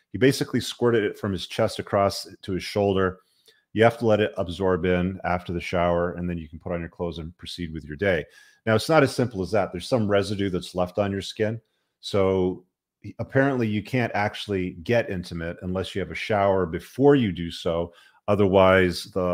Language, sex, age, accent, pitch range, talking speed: English, male, 30-49, American, 85-105 Hz, 210 wpm